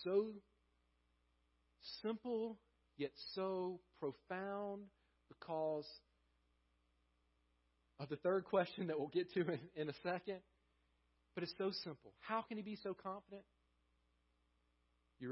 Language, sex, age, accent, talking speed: English, male, 40-59, American, 110 wpm